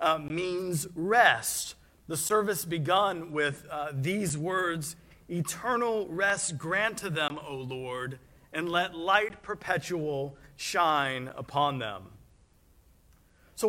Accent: American